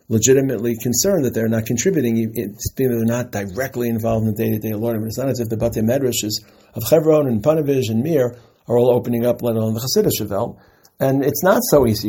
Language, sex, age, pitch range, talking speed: English, male, 50-69, 115-150 Hz, 225 wpm